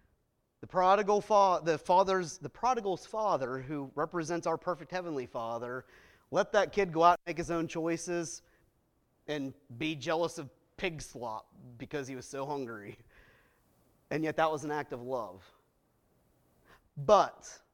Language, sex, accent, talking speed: English, male, American, 135 wpm